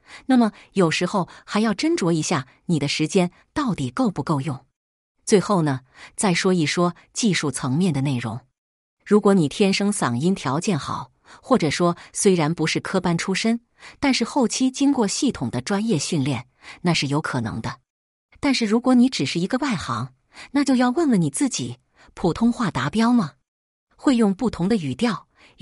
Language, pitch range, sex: Chinese, 145-220 Hz, female